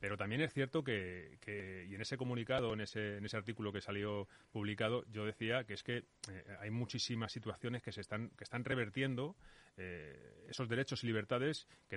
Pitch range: 105-145 Hz